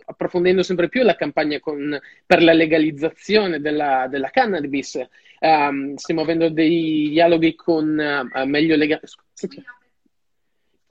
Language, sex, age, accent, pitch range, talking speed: Italian, male, 20-39, native, 155-195 Hz, 120 wpm